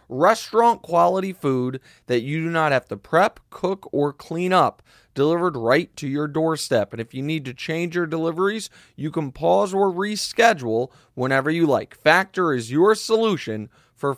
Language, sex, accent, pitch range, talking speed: English, male, American, 130-185 Hz, 170 wpm